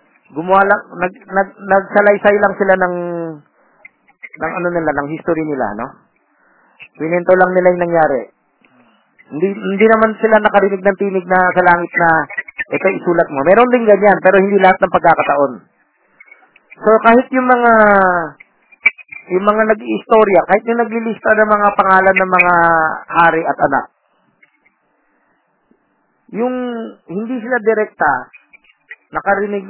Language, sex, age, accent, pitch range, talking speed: Filipino, male, 40-59, native, 170-215 Hz, 130 wpm